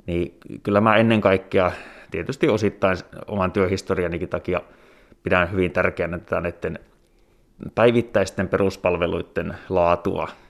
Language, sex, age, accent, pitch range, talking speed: Finnish, male, 20-39, native, 85-95 Hz, 90 wpm